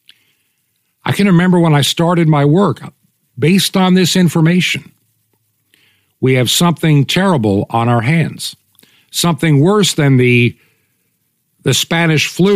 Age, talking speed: 60-79, 130 wpm